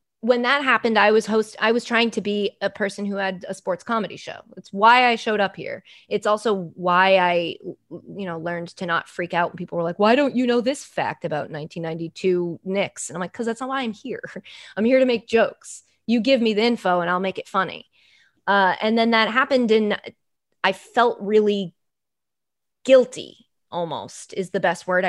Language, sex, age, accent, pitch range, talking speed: English, female, 20-39, American, 185-230 Hz, 210 wpm